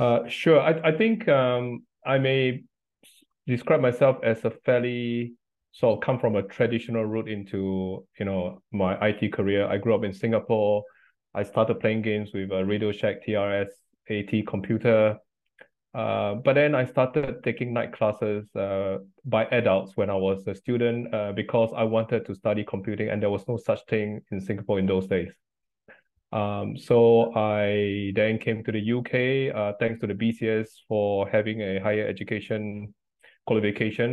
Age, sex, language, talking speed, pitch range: 20-39, male, English, 170 wpm, 105-120 Hz